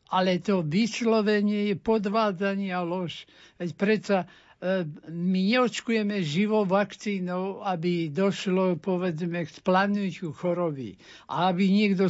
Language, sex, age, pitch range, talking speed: Slovak, male, 60-79, 175-205 Hz, 110 wpm